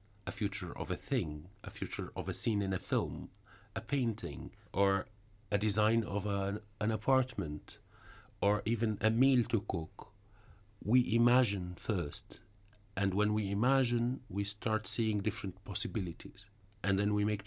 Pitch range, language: 95-115 Hz, Dutch